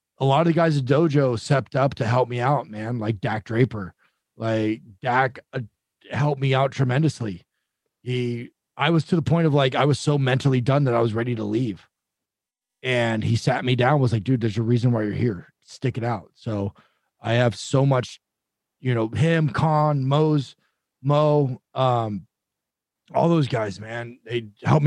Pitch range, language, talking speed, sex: 110-135 Hz, English, 185 wpm, male